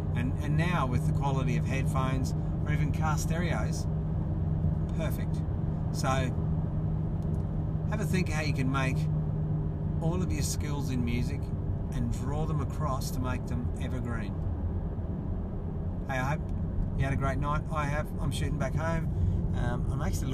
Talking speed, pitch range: 155 wpm, 80-95 Hz